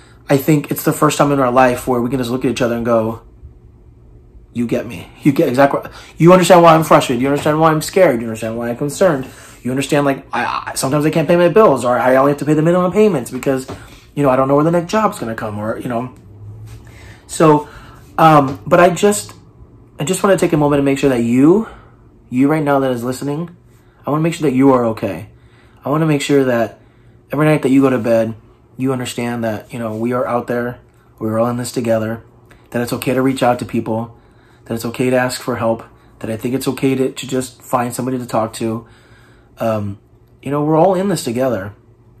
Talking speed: 240 wpm